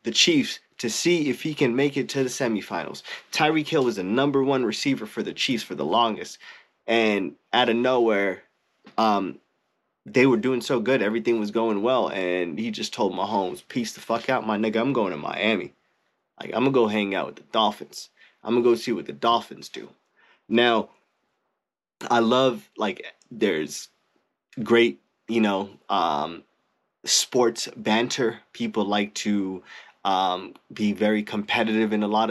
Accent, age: American, 20-39